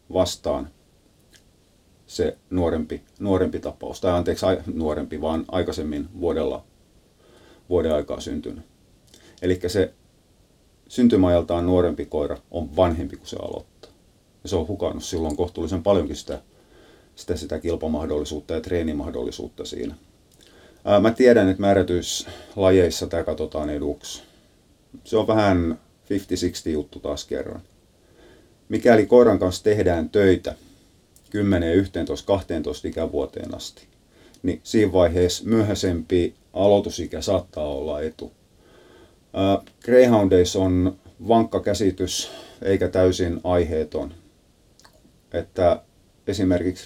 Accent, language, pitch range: native, Finnish, 80-95 Hz